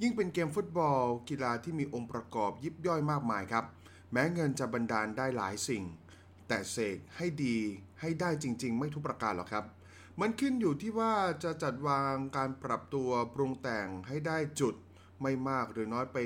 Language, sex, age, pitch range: Thai, male, 20-39, 110-160 Hz